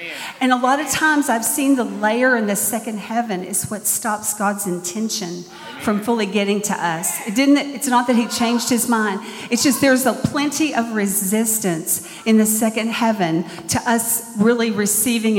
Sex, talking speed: female, 185 wpm